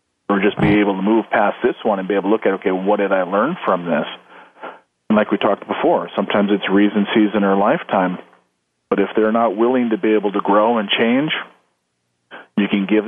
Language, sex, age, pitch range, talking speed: English, male, 40-59, 100-120 Hz, 220 wpm